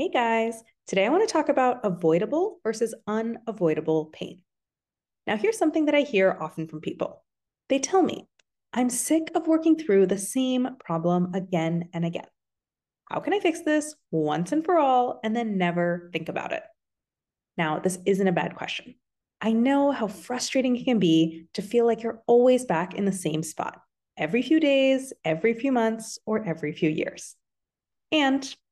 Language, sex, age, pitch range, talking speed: English, female, 20-39, 180-270 Hz, 175 wpm